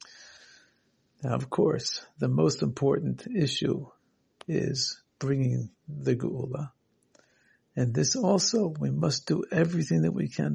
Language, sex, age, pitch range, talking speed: English, male, 60-79, 95-155 Hz, 120 wpm